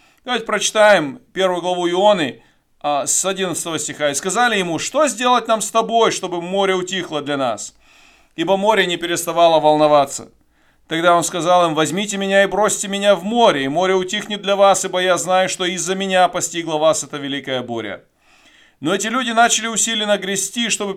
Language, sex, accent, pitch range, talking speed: Russian, male, native, 160-210 Hz, 175 wpm